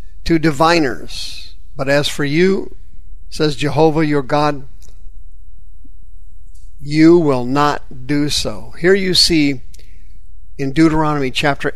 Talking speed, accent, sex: 105 wpm, American, male